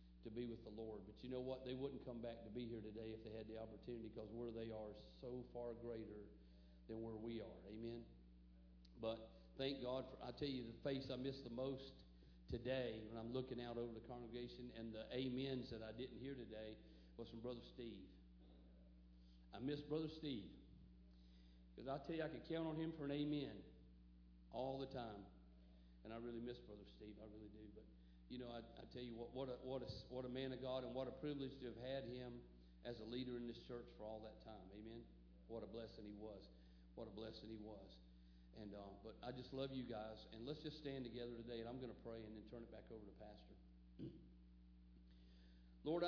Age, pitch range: 50-69, 100-130 Hz